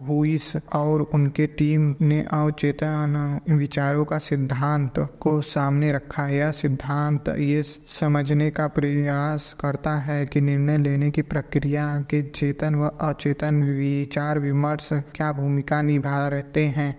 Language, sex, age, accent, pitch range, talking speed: Hindi, male, 20-39, native, 145-150 Hz, 120 wpm